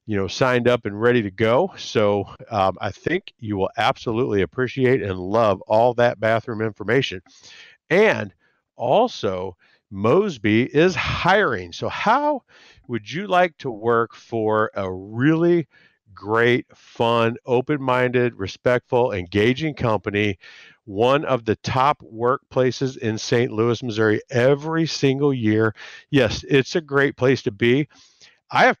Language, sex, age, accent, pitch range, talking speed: English, male, 50-69, American, 110-140 Hz, 135 wpm